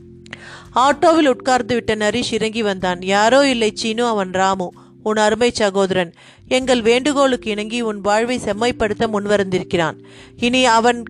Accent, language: native, Tamil